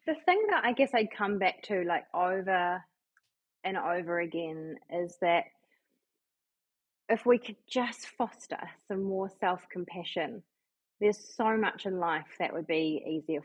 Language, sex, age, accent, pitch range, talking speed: English, female, 20-39, Australian, 170-220 Hz, 150 wpm